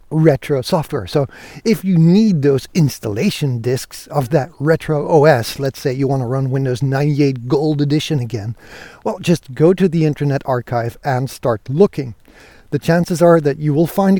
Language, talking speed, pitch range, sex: English, 175 wpm, 125-170 Hz, male